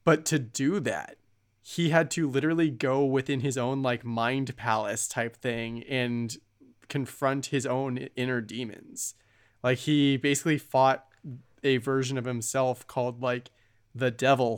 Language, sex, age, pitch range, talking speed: English, male, 20-39, 120-140 Hz, 145 wpm